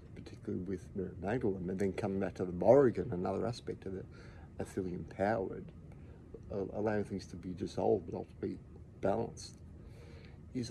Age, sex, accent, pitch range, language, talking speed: 50-69, male, Australian, 90-115 Hz, English, 155 wpm